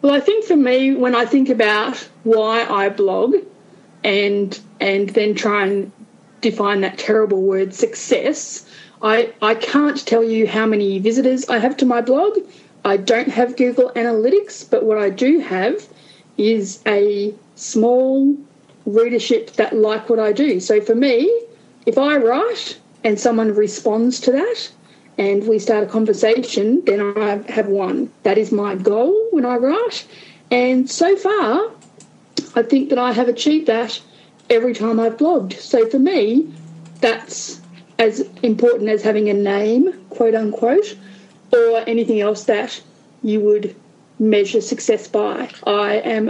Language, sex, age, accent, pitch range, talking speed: English, female, 30-49, Australian, 215-275 Hz, 155 wpm